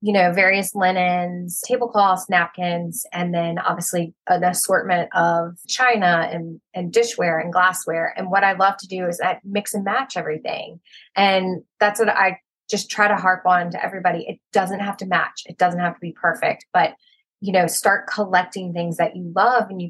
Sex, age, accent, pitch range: female, 20-39, American, 175-205 Hz